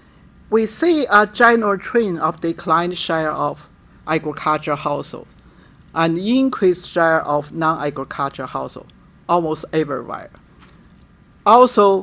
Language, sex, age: English, male, 50-69